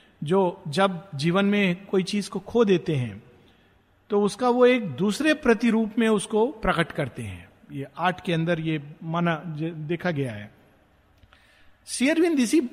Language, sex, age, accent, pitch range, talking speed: Hindi, male, 50-69, native, 145-230 Hz, 140 wpm